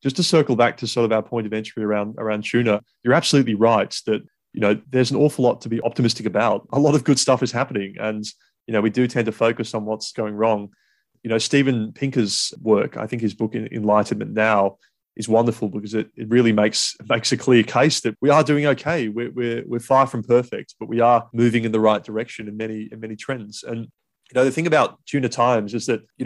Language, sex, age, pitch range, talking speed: English, male, 20-39, 110-125 Hz, 240 wpm